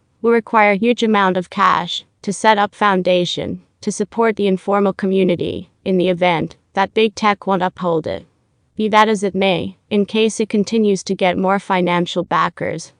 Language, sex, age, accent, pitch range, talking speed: English, female, 30-49, American, 180-210 Hz, 170 wpm